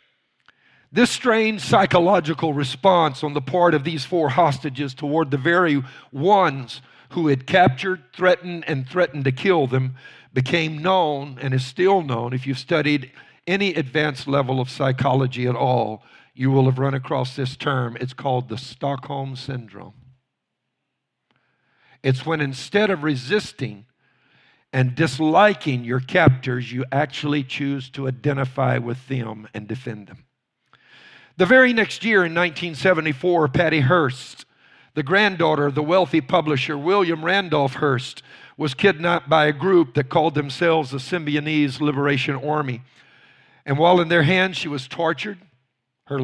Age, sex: 50-69, male